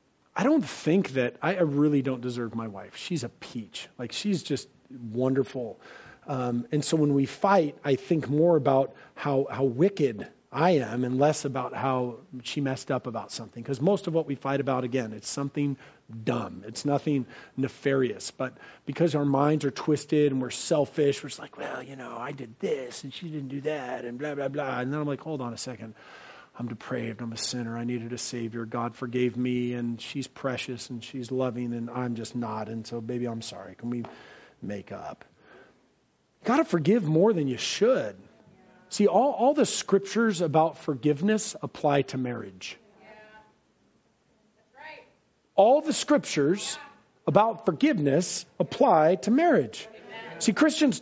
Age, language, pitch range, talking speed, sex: 40-59, English, 125-185 Hz, 175 wpm, male